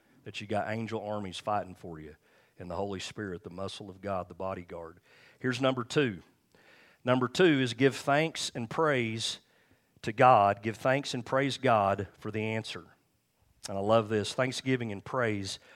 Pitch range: 100-125 Hz